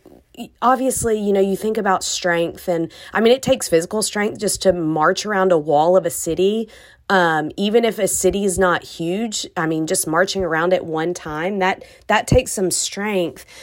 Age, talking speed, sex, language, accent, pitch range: 30-49, 195 wpm, female, English, American, 170-205 Hz